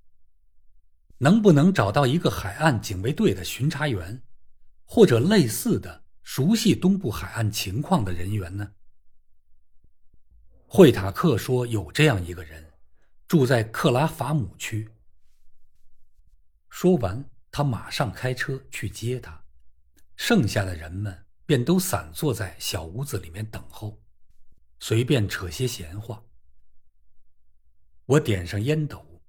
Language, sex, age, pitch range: Chinese, male, 50-69, 80-125 Hz